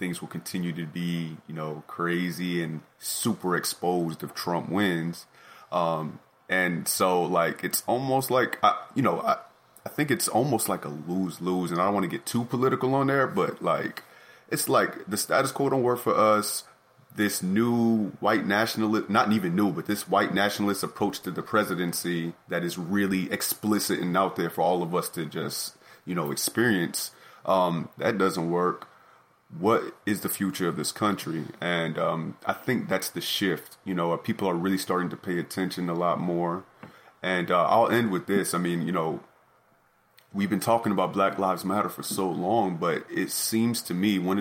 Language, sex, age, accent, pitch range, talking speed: English, male, 30-49, American, 85-105 Hz, 190 wpm